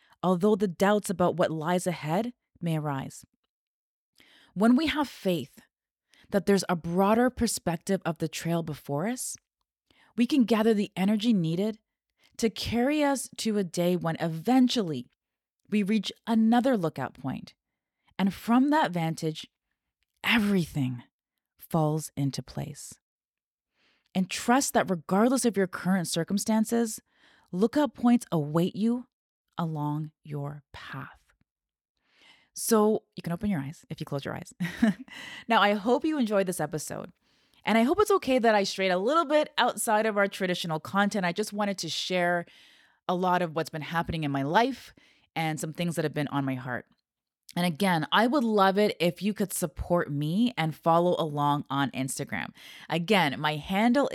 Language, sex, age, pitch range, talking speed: English, female, 20-39, 160-225 Hz, 155 wpm